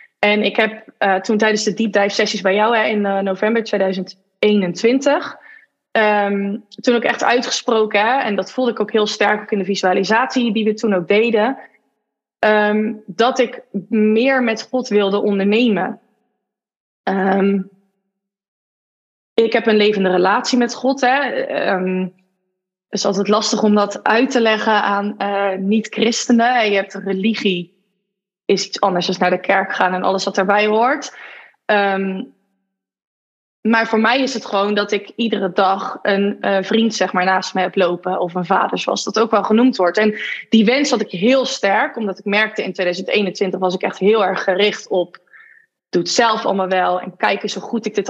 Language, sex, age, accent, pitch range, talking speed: Dutch, female, 20-39, Dutch, 195-225 Hz, 180 wpm